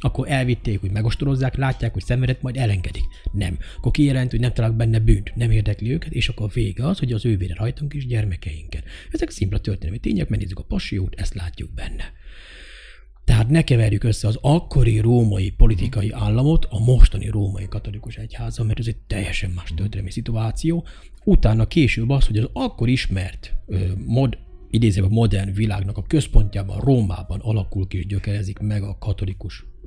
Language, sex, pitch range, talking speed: Hungarian, male, 95-120 Hz, 165 wpm